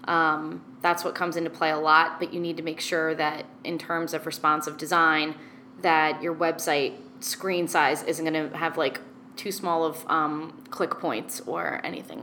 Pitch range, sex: 165-195 Hz, female